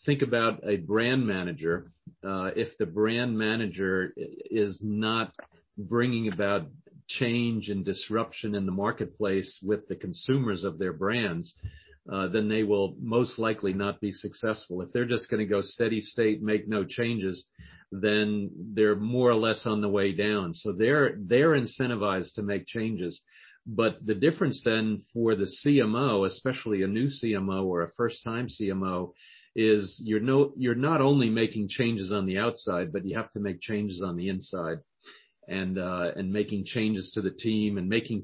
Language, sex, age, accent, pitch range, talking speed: English, male, 50-69, American, 95-115 Hz, 170 wpm